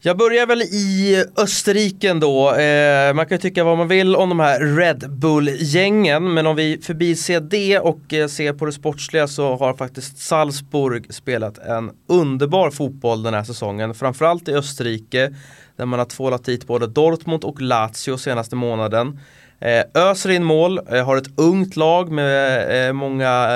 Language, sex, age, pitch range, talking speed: English, male, 20-39, 120-155 Hz, 160 wpm